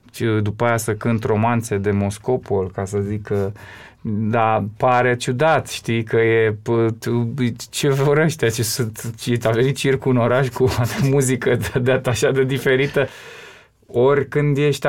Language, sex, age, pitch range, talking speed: Romanian, male, 20-39, 110-135 Hz, 155 wpm